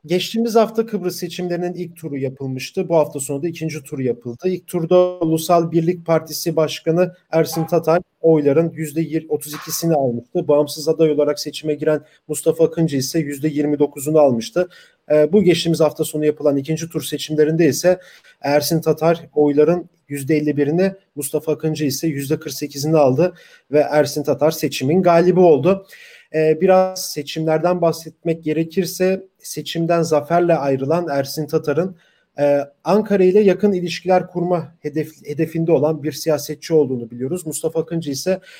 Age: 40-59